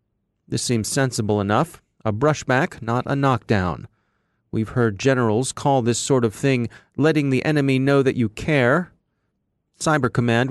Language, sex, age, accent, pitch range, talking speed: English, male, 30-49, American, 115-150 Hz, 150 wpm